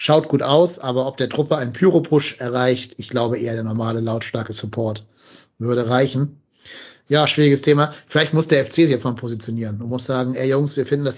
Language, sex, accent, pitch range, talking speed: German, male, German, 120-145 Hz, 200 wpm